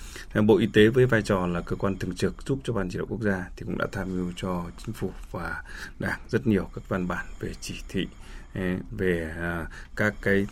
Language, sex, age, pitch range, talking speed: Vietnamese, male, 20-39, 95-120 Hz, 220 wpm